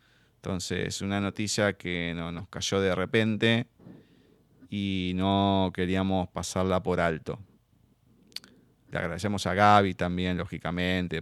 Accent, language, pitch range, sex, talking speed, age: Argentinian, Spanish, 90-115 Hz, male, 105 wpm, 20-39